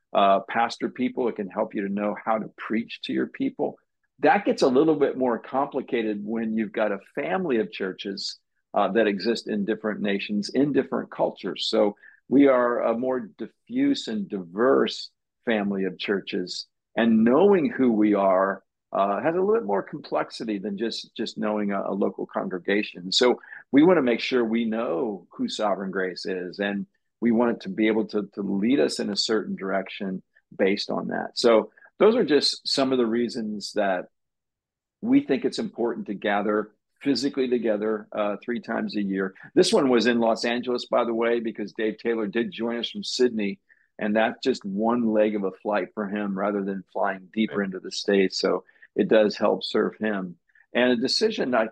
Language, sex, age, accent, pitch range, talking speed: English, male, 50-69, American, 100-120 Hz, 195 wpm